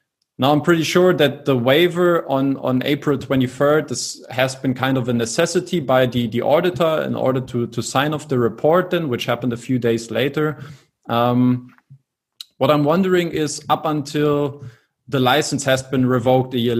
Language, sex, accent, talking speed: German, male, German, 175 wpm